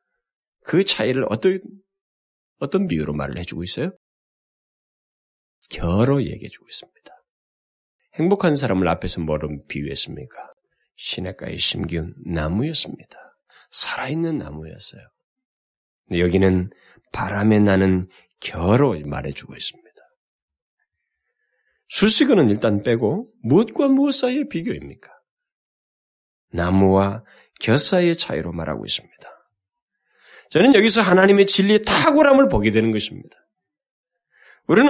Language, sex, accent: Korean, male, native